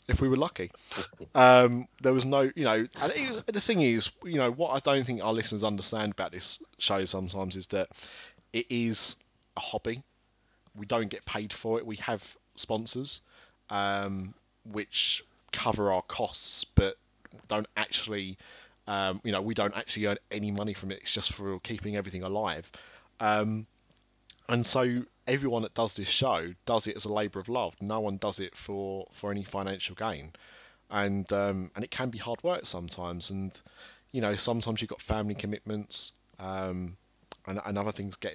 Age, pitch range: 20-39, 100-115 Hz